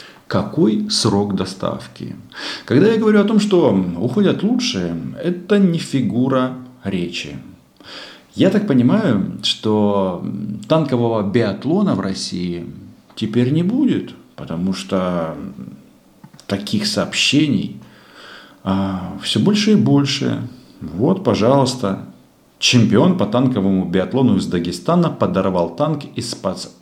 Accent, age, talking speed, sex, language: native, 50-69, 105 wpm, male, Russian